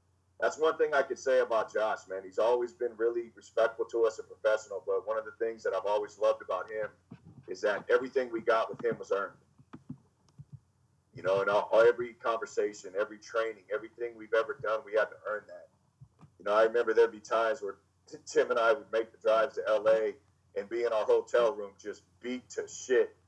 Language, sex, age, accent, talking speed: English, male, 40-59, American, 210 wpm